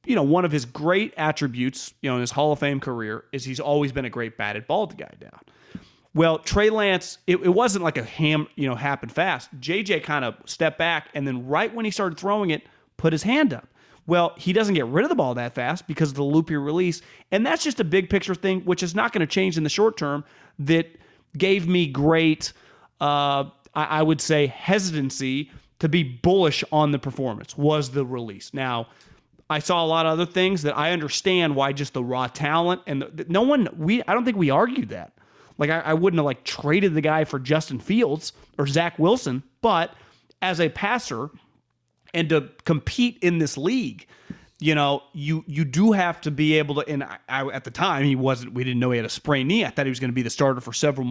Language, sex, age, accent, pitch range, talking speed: English, male, 30-49, American, 140-180 Hz, 230 wpm